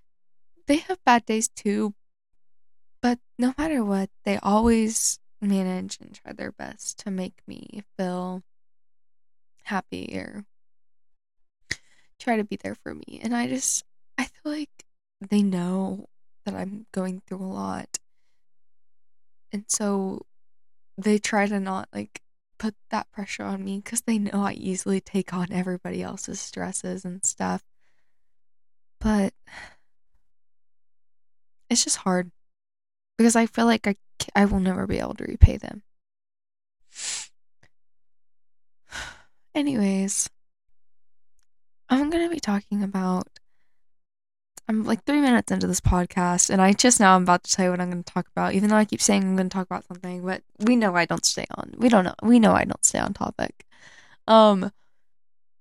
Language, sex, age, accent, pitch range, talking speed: English, female, 10-29, American, 170-220 Hz, 150 wpm